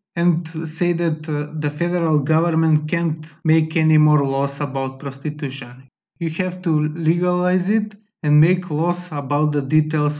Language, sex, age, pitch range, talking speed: English, male, 20-39, 150-180 Hz, 145 wpm